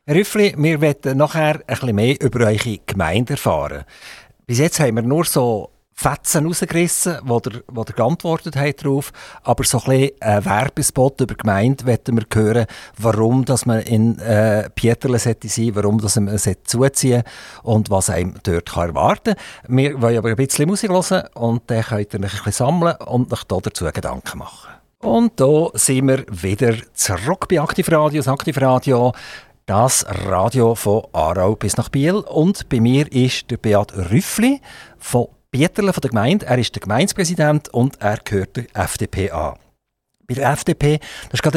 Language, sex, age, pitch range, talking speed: German, male, 50-69, 110-145 Hz, 165 wpm